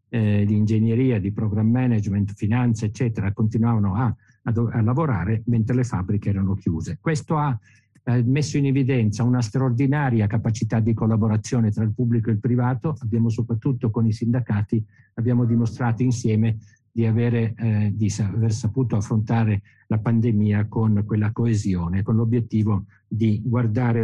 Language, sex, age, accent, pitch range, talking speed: Italian, male, 50-69, native, 105-125 Hz, 140 wpm